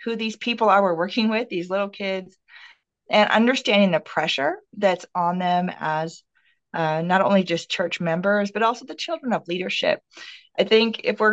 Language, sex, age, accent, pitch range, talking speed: English, female, 40-59, American, 170-215 Hz, 180 wpm